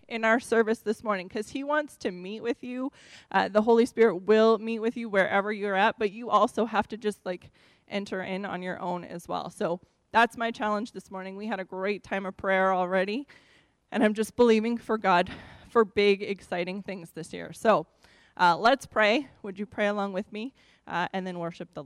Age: 20-39